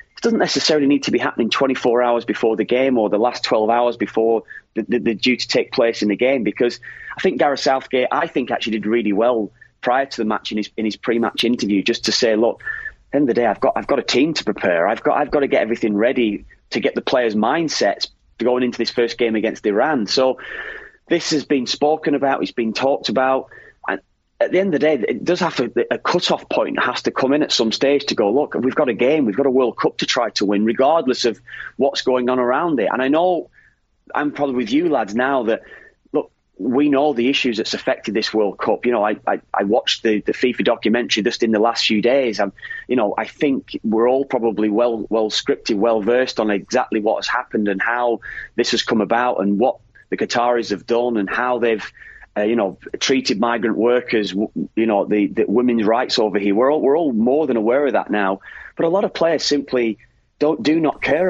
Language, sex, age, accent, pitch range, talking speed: English, male, 30-49, British, 110-140 Hz, 240 wpm